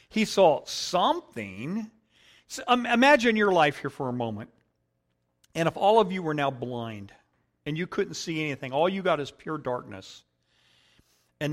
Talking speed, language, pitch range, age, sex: 165 wpm, English, 125-180 Hz, 50-69, male